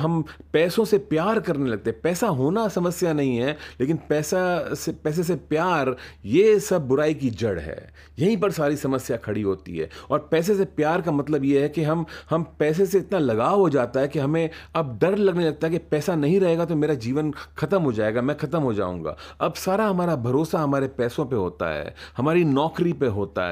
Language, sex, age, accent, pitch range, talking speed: Hindi, male, 30-49, native, 130-180 Hz, 210 wpm